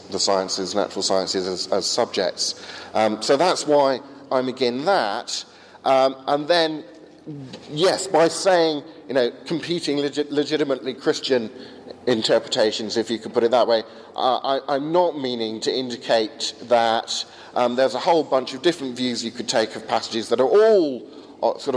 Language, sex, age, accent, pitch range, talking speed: English, male, 40-59, British, 110-140 Hz, 155 wpm